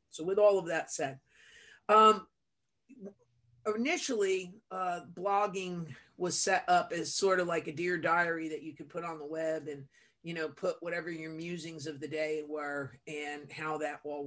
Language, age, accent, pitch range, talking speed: English, 40-59, American, 150-180 Hz, 175 wpm